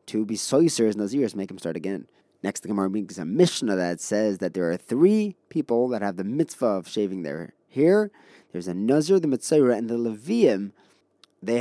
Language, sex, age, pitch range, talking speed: English, male, 20-39, 100-125 Hz, 195 wpm